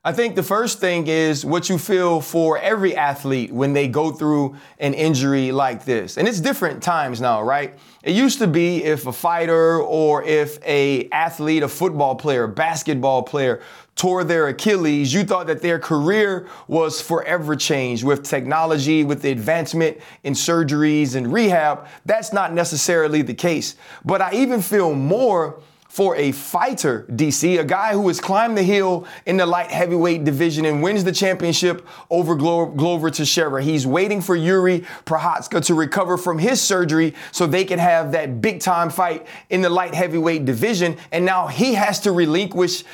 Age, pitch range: 30-49, 155-185 Hz